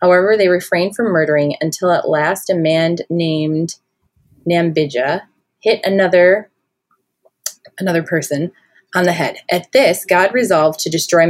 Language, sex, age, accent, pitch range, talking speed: English, female, 20-39, American, 160-195 Hz, 135 wpm